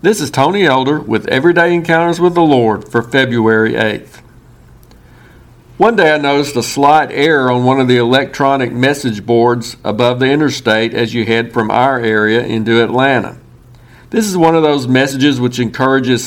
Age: 50-69